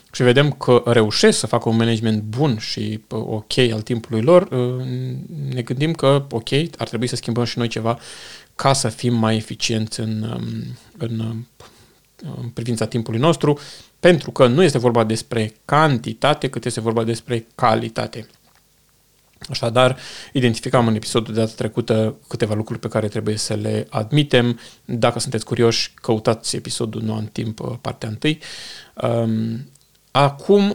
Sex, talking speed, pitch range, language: male, 145 wpm, 115-145 Hz, Romanian